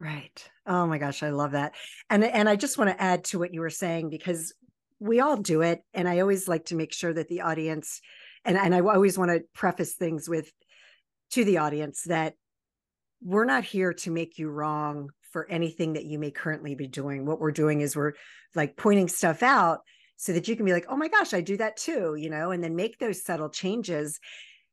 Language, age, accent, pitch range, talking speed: English, 50-69, American, 155-210 Hz, 225 wpm